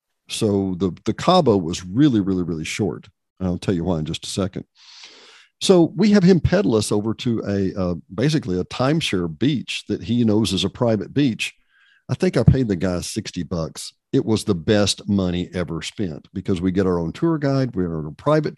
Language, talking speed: English, 205 wpm